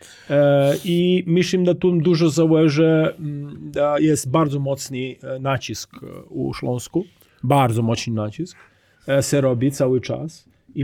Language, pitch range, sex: Polish, 130-155 Hz, male